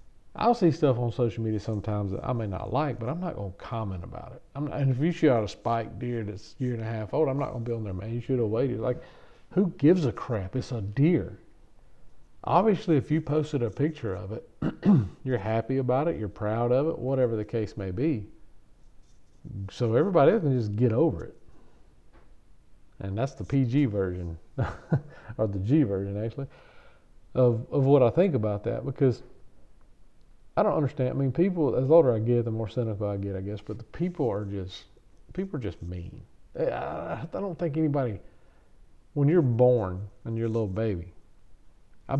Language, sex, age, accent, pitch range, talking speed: English, male, 50-69, American, 105-135 Hz, 205 wpm